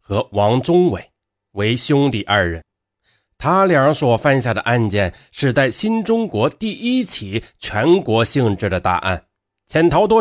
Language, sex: Chinese, male